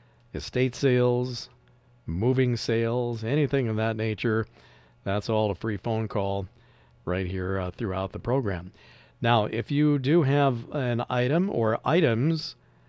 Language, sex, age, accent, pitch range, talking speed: English, male, 50-69, American, 90-125 Hz, 135 wpm